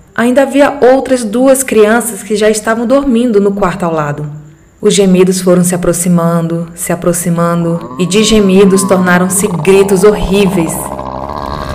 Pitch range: 175-210 Hz